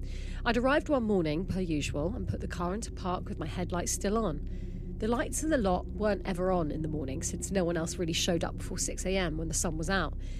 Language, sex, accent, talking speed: English, female, British, 240 wpm